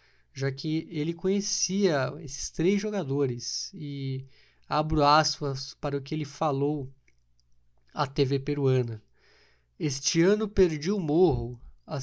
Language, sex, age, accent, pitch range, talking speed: Portuguese, male, 20-39, Brazilian, 130-160 Hz, 120 wpm